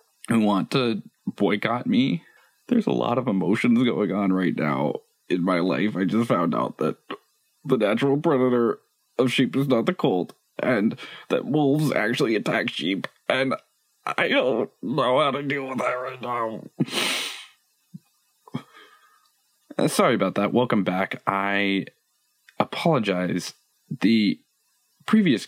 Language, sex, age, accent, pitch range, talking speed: English, male, 20-39, American, 110-175 Hz, 135 wpm